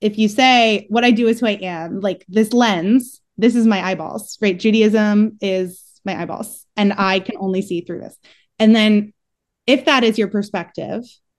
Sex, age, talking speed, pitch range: female, 20-39, 190 wpm, 195-240 Hz